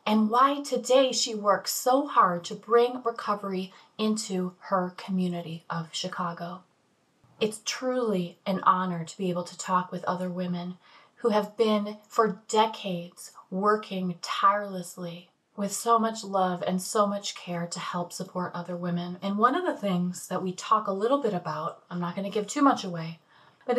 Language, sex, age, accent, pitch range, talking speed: English, female, 20-39, American, 185-235 Hz, 170 wpm